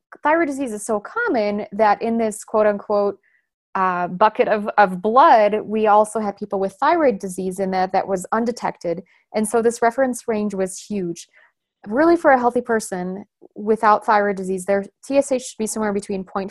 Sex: female